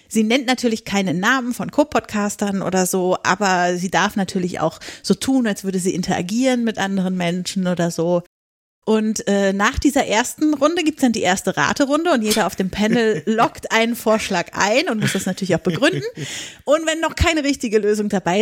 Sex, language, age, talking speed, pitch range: female, German, 30-49, 190 wpm, 190-260 Hz